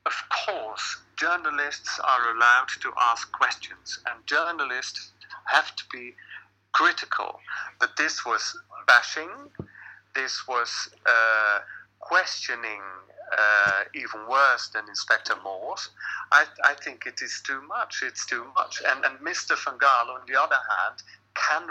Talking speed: 135 wpm